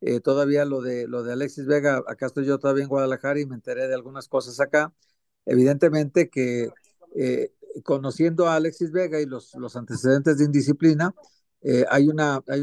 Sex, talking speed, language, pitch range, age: male, 180 wpm, Spanish, 130-155 Hz, 50-69